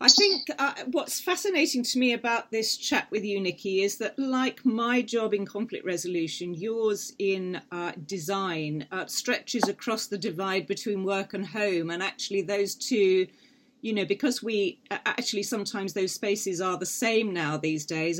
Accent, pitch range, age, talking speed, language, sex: British, 180-225 Hz, 40-59, 170 wpm, English, female